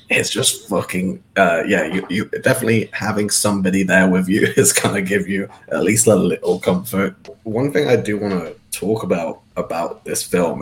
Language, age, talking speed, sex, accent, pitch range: English, 20-39, 185 wpm, male, British, 95-110 Hz